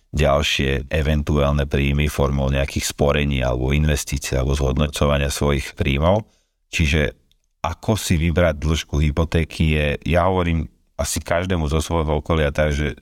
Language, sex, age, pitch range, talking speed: Slovak, male, 40-59, 70-85 Hz, 125 wpm